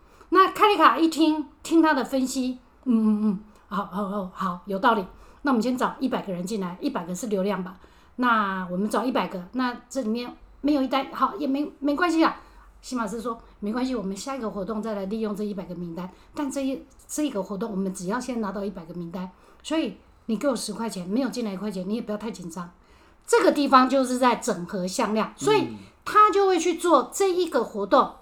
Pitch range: 210-290 Hz